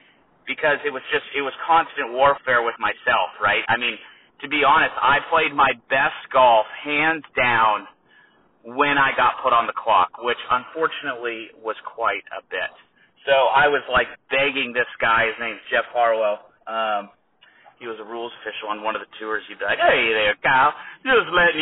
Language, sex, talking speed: English, male, 185 wpm